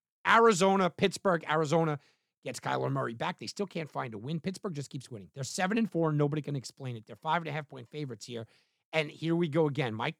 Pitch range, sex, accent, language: 140-205 Hz, male, American, English